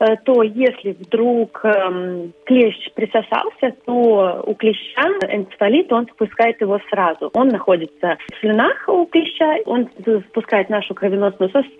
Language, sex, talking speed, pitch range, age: Russian, female, 120 wpm, 190-235 Hz, 30-49